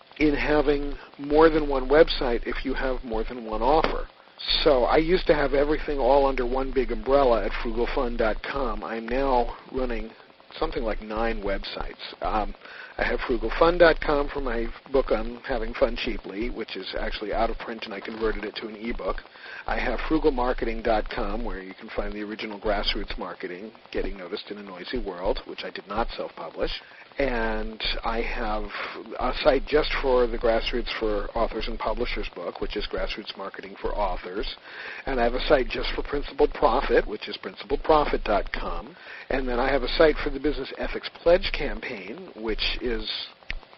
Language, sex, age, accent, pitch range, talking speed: English, male, 50-69, American, 110-145 Hz, 170 wpm